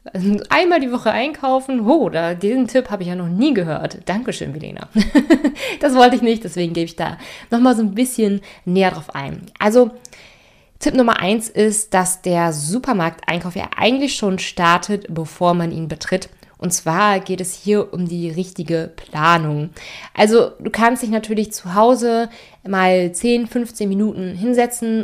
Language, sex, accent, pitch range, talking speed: German, female, German, 180-230 Hz, 165 wpm